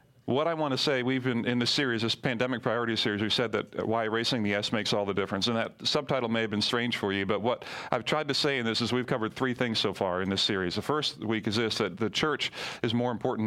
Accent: American